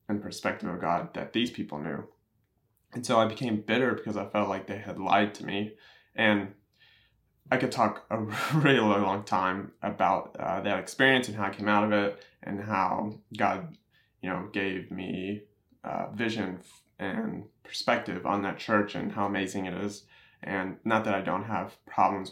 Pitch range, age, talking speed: 100-115 Hz, 20-39, 185 wpm